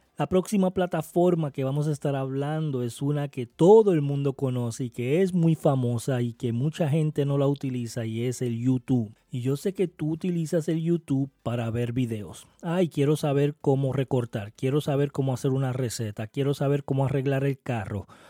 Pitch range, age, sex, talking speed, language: 125-160 Hz, 30-49, male, 195 wpm, Spanish